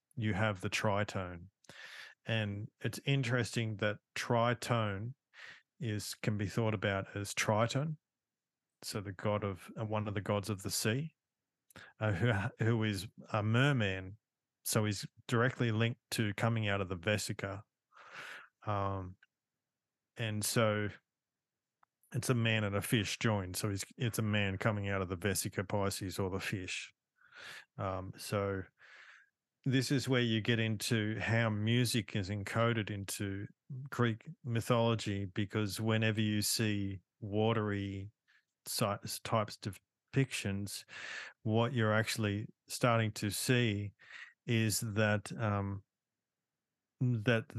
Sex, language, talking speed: male, English, 125 wpm